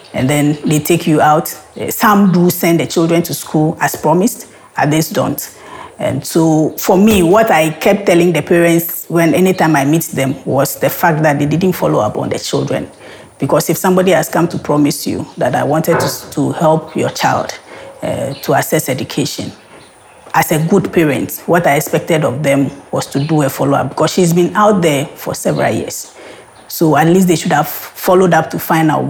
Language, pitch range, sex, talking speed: English, 150-175 Hz, female, 200 wpm